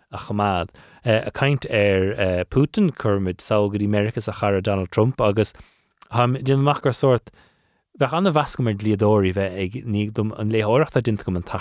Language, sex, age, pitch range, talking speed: English, male, 30-49, 95-115 Hz, 165 wpm